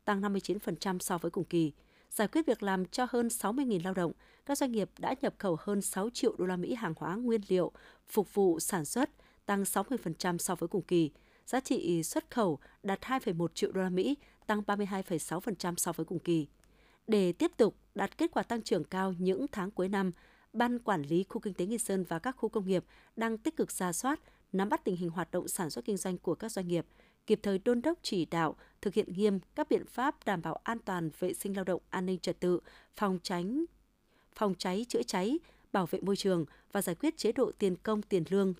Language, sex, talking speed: Vietnamese, female, 225 wpm